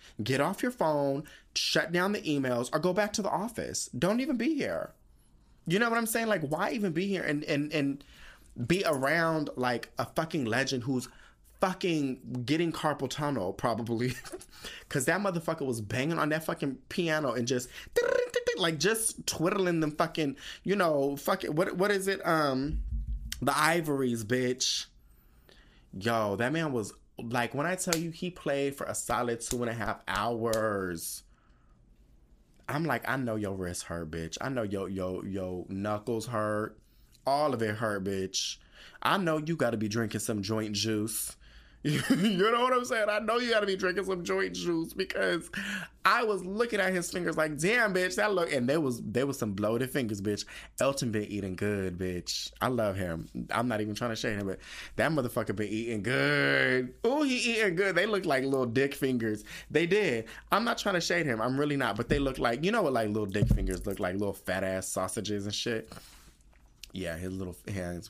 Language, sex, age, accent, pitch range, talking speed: English, male, 20-39, American, 105-170 Hz, 190 wpm